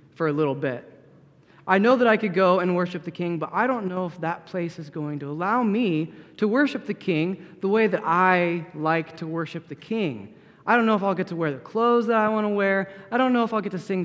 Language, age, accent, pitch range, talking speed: English, 30-49, American, 150-190 Hz, 265 wpm